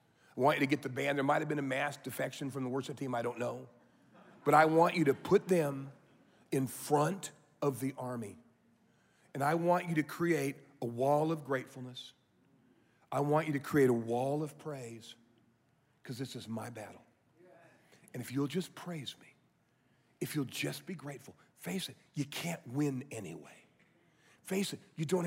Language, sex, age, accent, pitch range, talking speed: English, male, 40-59, American, 140-180 Hz, 185 wpm